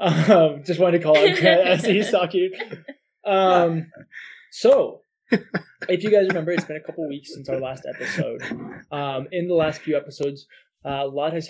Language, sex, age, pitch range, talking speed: English, male, 20-39, 135-170 Hz, 185 wpm